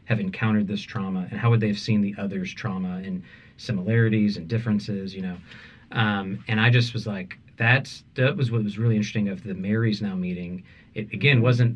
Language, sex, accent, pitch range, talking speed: English, male, American, 105-125 Hz, 205 wpm